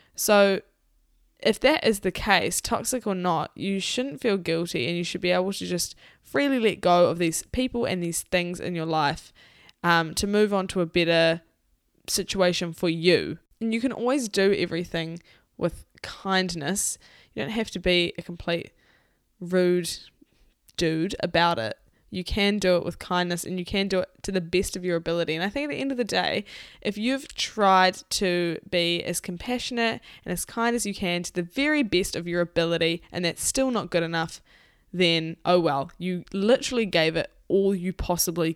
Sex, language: female, English